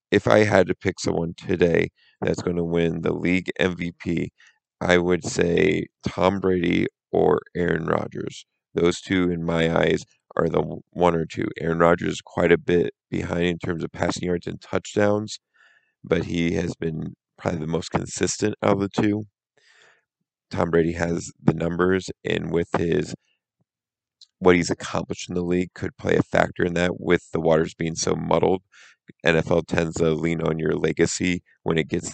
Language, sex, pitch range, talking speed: English, male, 85-95 Hz, 175 wpm